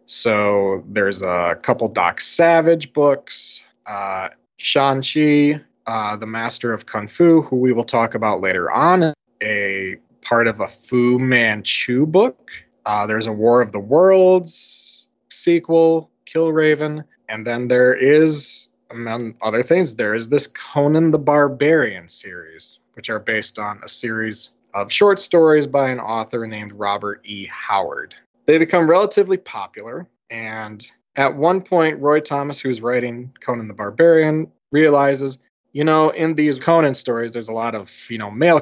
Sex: male